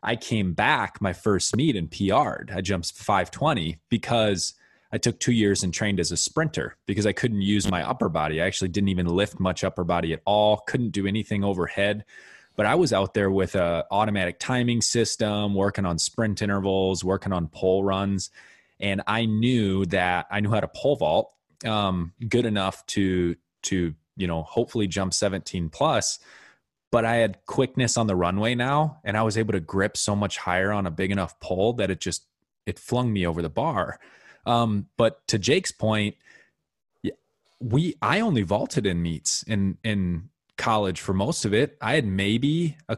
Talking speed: 185 wpm